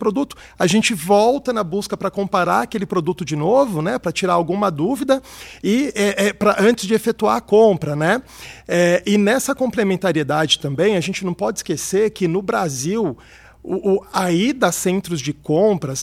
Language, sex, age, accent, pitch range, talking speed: Portuguese, male, 40-59, Brazilian, 175-215 Hz, 170 wpm